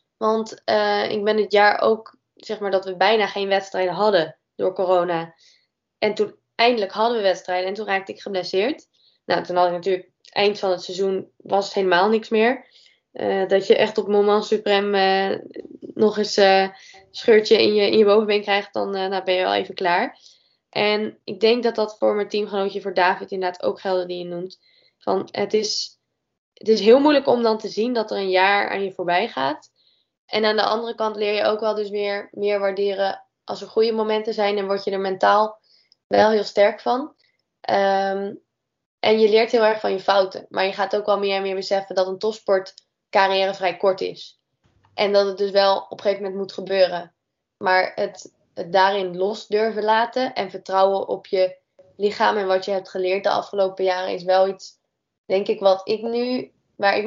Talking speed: 195 wpm